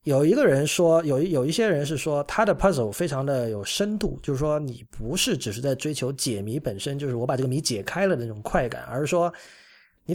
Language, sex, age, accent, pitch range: Chinese, male, 20-39, native, 120-165 Hz